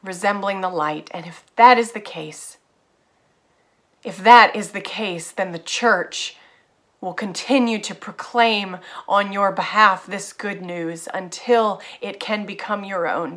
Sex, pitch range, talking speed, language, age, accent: female, 200-250 Hz, 150 wpm, English, 30-49, American